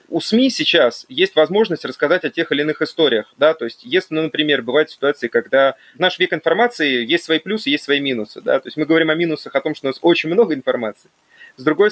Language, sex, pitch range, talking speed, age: Russian, male, 130-170 Hz, 230 wpm, 30-49